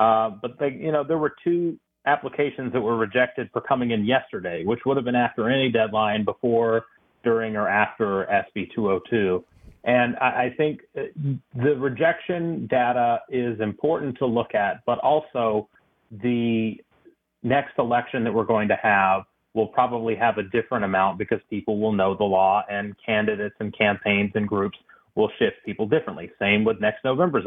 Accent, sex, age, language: American, male, 30-49, English